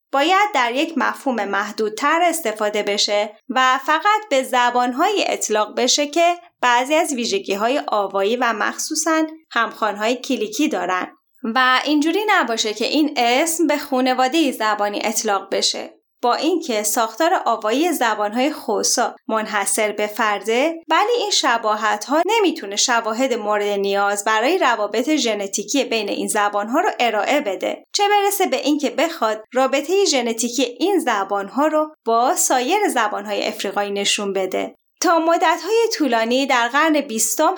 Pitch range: 220-325 Hz